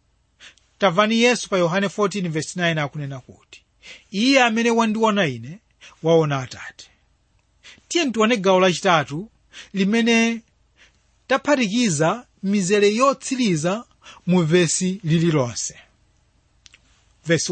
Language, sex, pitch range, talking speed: English, male, 145-225 Hz, 75 wpm